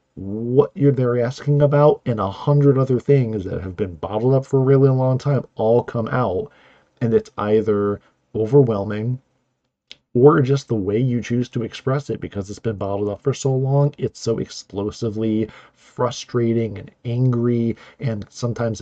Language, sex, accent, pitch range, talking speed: English, male, American, 105-130 Hz, 170 wpm